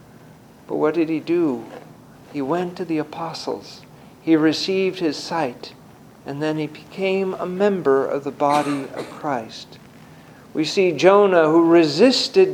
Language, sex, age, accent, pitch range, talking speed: English, male, 50-69, American, 150-195 Hz, 145 wpm